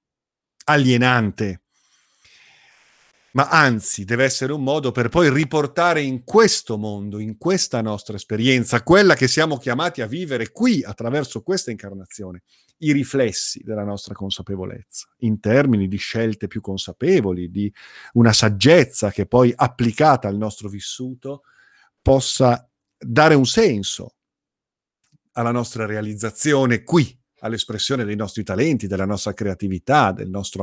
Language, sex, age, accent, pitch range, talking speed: Italian, male, 50-69, native, 100-130 Hz, 125 wpm